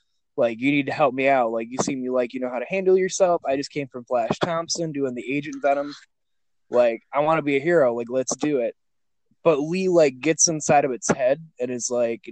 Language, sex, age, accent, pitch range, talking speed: English, male, 20-39, American, 125-180 Hz, 240 wpm